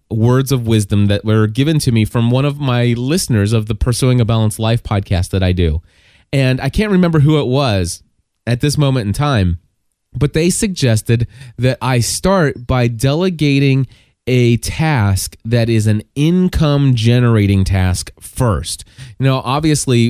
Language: English